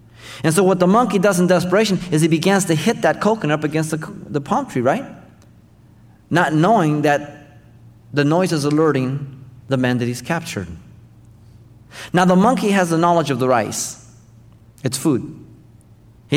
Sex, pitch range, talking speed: male, 115-150 Hz, 170 wpm